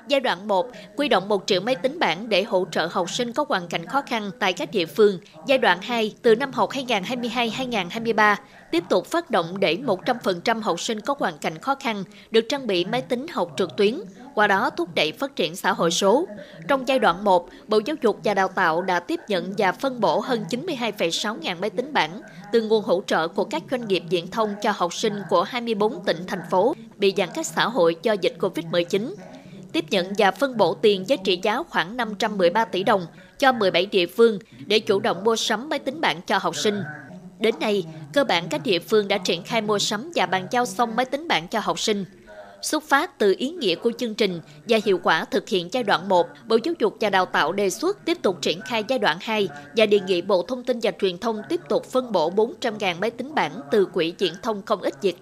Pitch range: 190-250 Hz